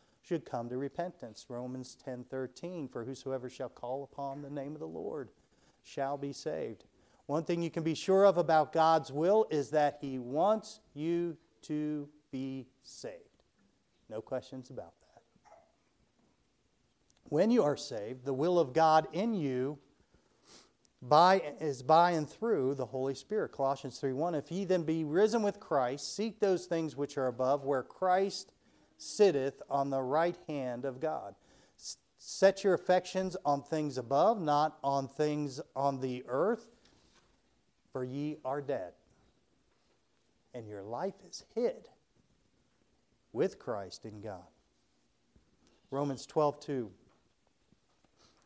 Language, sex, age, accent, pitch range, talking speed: English, male, 40-59, American, 130-165 Hz, 135 wpm